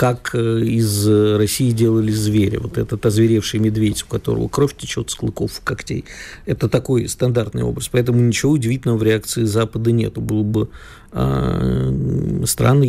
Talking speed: 145 wpm